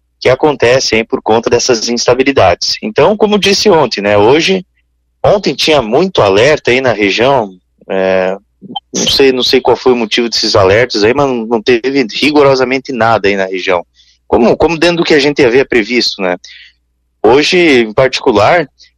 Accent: Brazilian